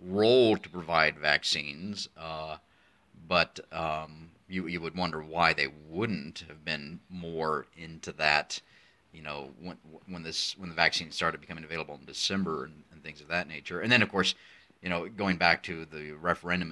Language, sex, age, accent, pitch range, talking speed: English, male, 30-49, American, 80-90 Hz, 175 wpm